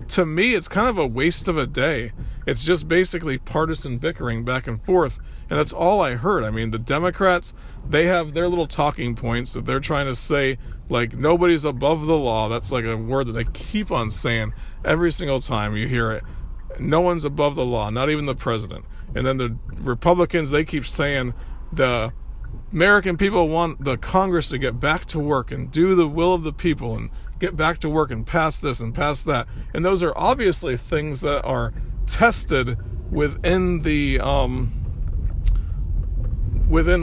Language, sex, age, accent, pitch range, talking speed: English, male, 40-59, American, 120-165 Hz, 185 wpm